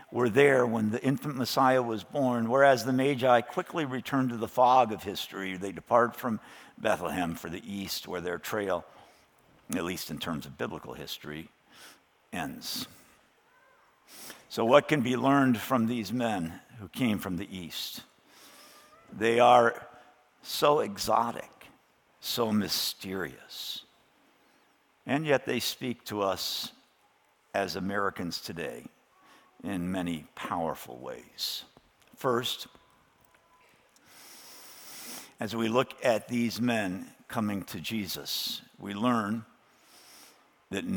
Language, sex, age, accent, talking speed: English, male, 60-79, American, 120 wpm